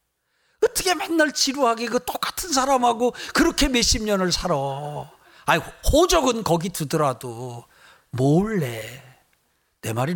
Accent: native